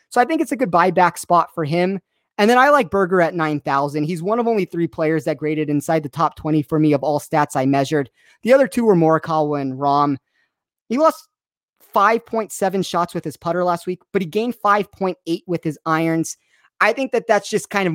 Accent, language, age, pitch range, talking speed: American, English, 30-49, 150-190 Hz, 220 wpm